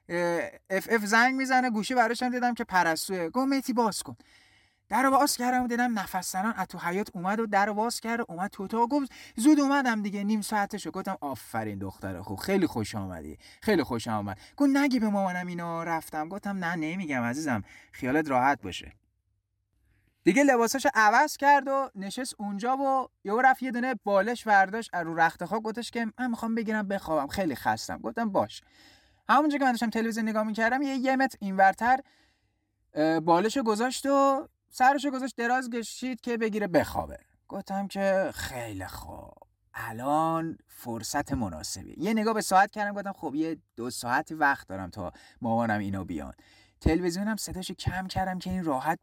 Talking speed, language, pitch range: 160 wpm, Persian, 150-235 Hz